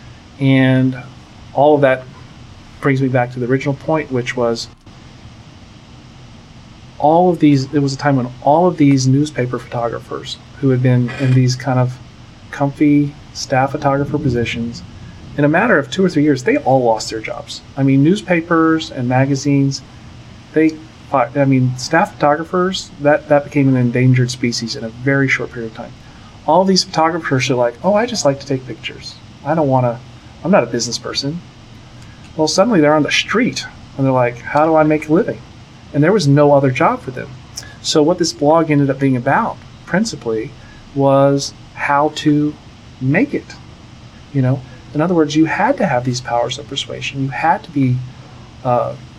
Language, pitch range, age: English, 120-150 Hz, 40-59